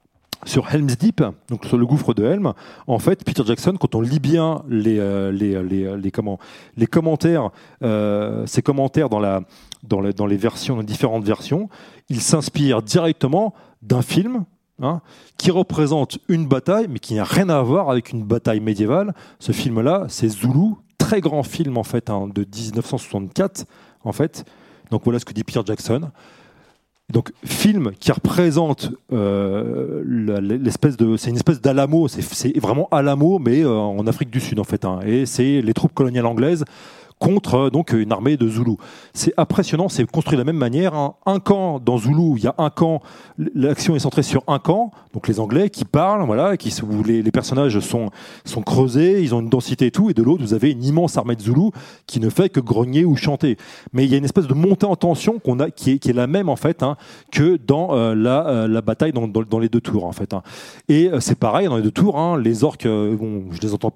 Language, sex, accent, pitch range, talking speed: French, male, French, 115-160 Hz, 215 wpm